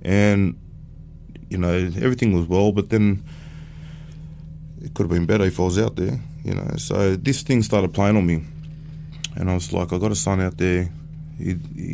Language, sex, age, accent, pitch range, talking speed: English, male, 20-39, Australian, 85-105 Hz, 190 wpm